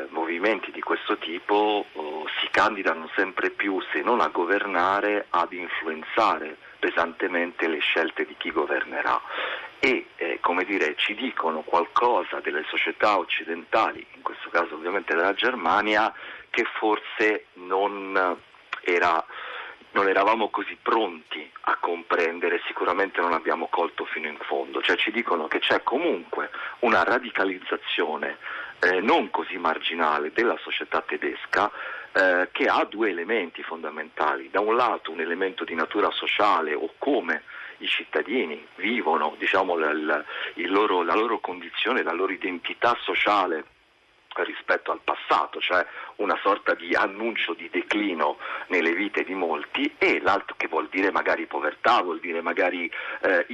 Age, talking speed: 40-59, 140 wpm